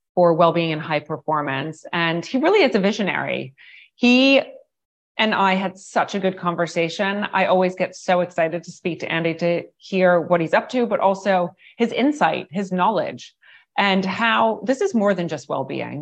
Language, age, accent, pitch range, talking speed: English, 30-49, American, 165-215 Hz, 180 wpm